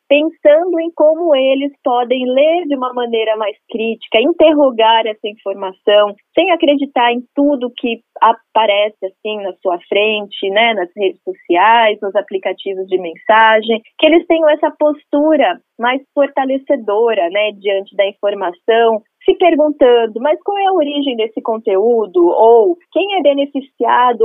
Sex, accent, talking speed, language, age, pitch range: female, Brazilian, 140 wpm, Portuguese, 20-39, 220-295 Hz